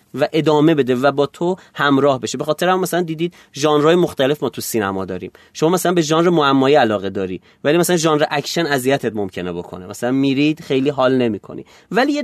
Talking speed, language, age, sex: 195 wpm, Persian, 30-49, male